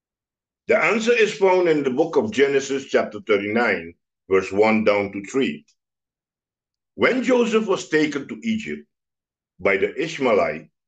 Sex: male